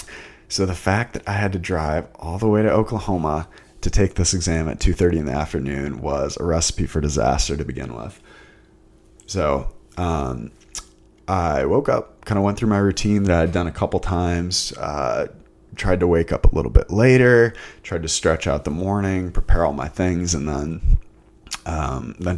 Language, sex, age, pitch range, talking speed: English, male, 20-39, 85-105 Hz, 190 wpm